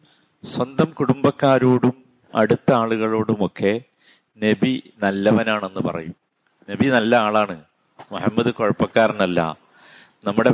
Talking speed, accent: 75 wpm, native